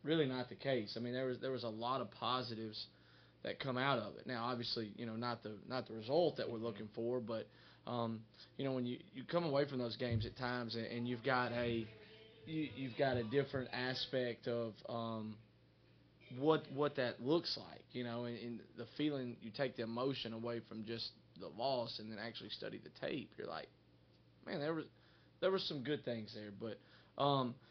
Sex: male